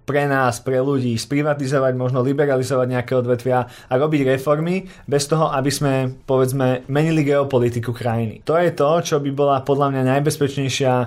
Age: 20-39